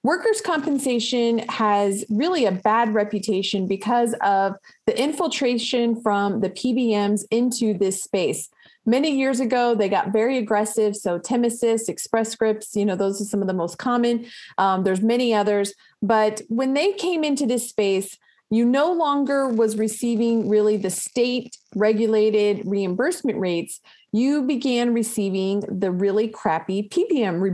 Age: 30-49